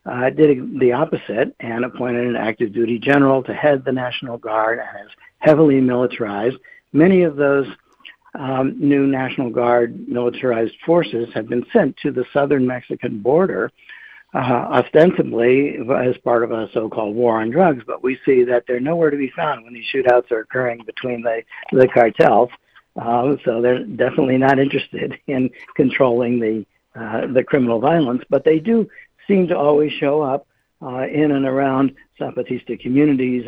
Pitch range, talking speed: 120-140 Hz, 165 wpm